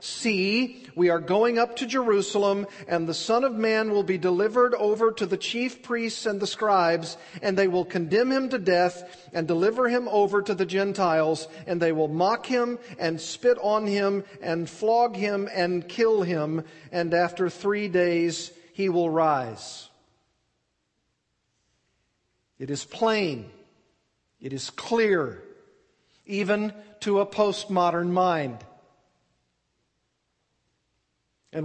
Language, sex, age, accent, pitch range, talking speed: English, male, 50-69, American, 170-220 Hz, 135 wpm